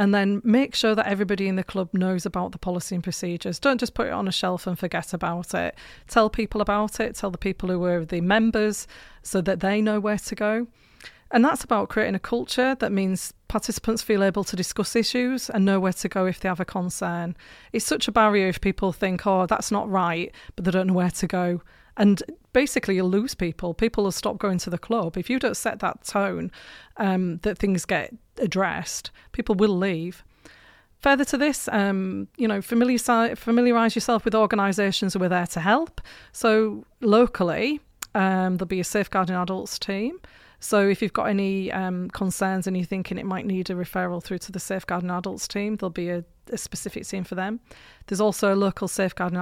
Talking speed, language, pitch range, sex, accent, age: 210 wpm, English, 185-220 Hz, female, British, 30-49